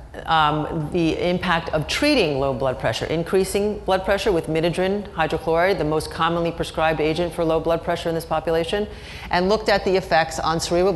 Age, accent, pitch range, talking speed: 40-59, American, 150-190 Hz, 175 wpm